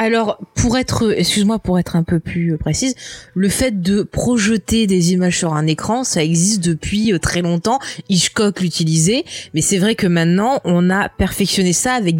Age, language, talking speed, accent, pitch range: 20-39, French, 175 wpm, French, 175-220 Hz